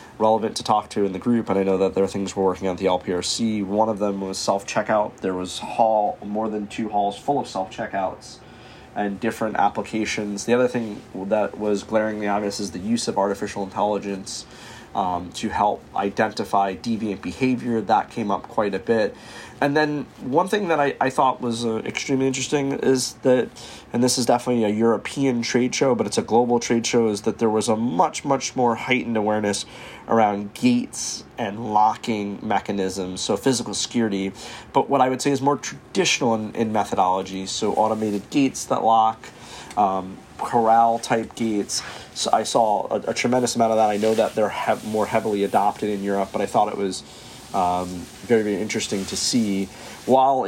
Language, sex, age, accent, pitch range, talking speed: English, male, 30-49, American, 100-120 Hz, 195 wpm